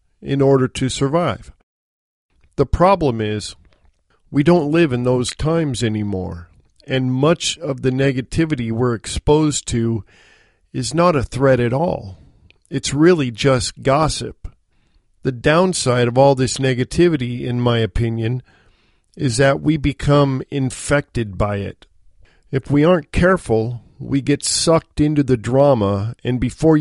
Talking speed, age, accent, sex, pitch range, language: 135 wpm, 50-69, American, male, 110-140 Hz, English